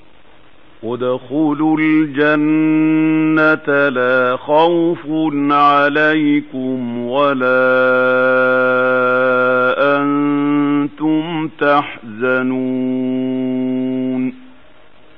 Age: 50-69